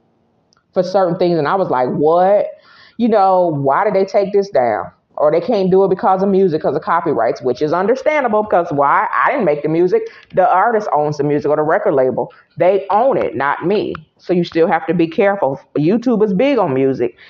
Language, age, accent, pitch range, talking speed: English, 30-49, American, 165-205 Hz, 220 wpm